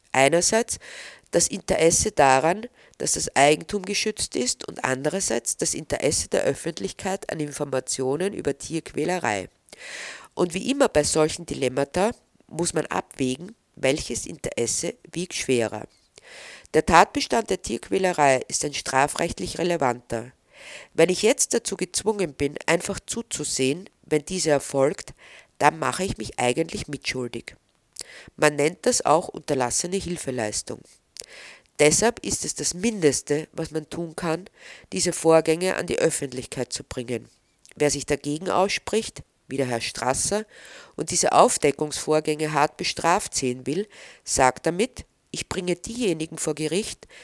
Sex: female